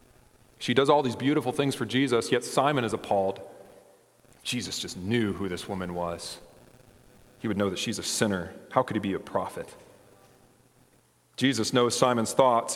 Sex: male